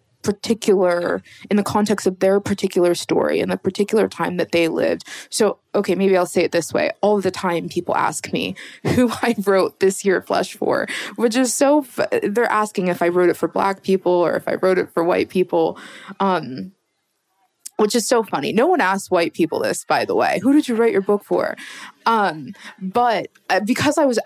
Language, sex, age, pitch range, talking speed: English, female, 20-39, 185-230 Hz, 205 wpm